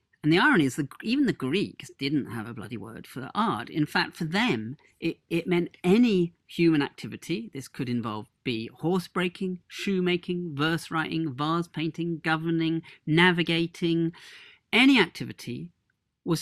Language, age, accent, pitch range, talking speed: English, 40-59, British, 120-170 Hz, 155 wpm